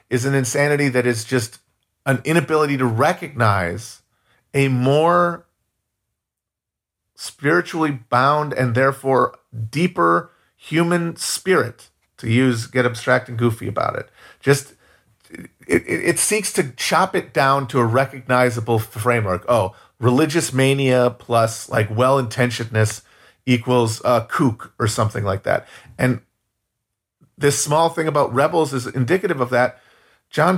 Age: 40-59